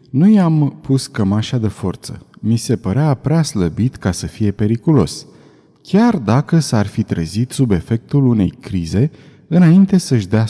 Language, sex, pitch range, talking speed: Romanian, male, 105-160 Hz, 155 wpm